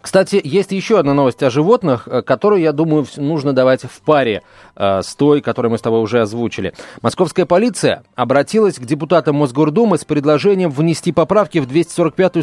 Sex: male